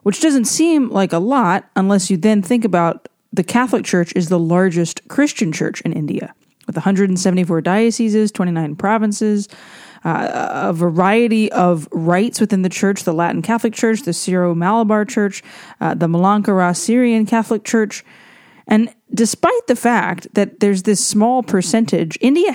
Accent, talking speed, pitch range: American, 155 wpm, 180-225 Hz